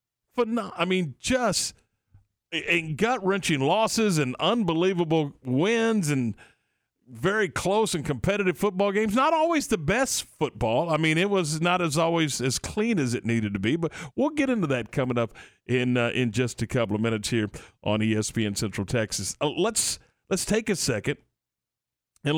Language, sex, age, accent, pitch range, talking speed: English, male, 50-69, American, 125-175 Hz, 165 wpm